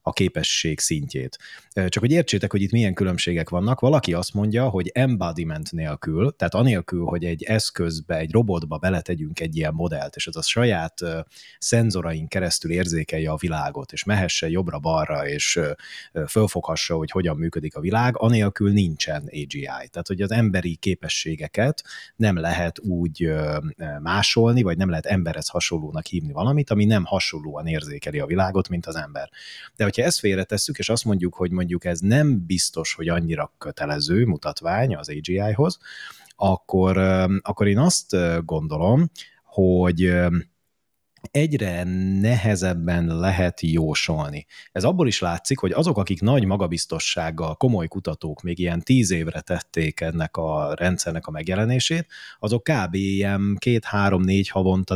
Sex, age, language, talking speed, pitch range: male, 30-49, Hungarian, 140 wpm, 85-105 Hz